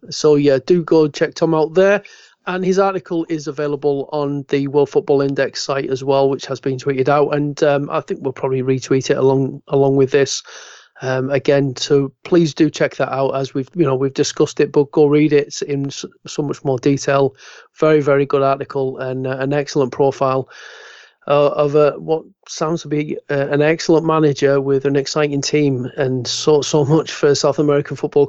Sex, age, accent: male, 30-49, British